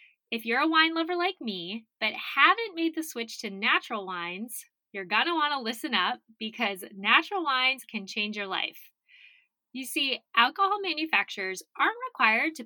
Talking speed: 170 wpm